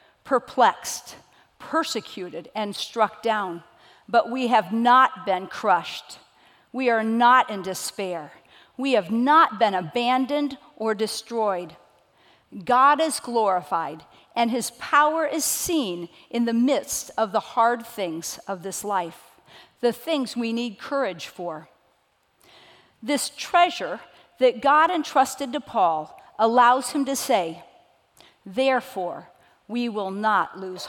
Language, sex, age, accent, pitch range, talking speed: English, female, 50-69, American, 220-290 Hz, 120 wpm